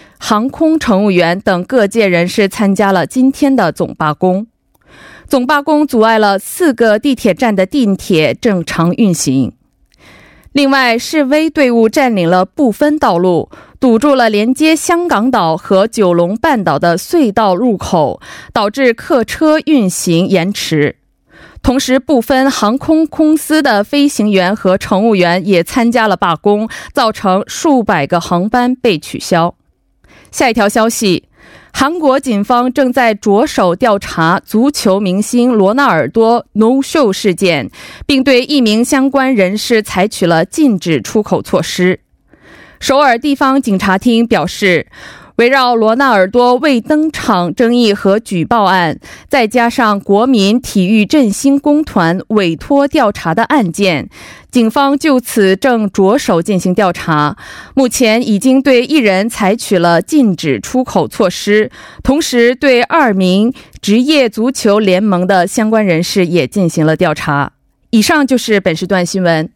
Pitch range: 190-265 Hz